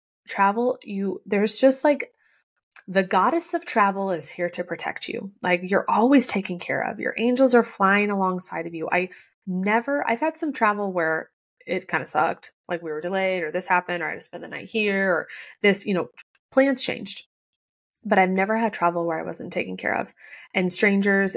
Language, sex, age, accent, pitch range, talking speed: English, female, 20-39, American, 180-225 Hz, 200 wpm